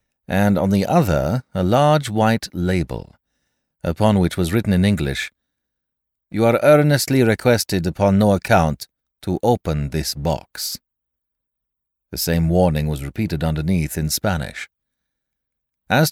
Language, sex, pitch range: English, male, 80-125 Hz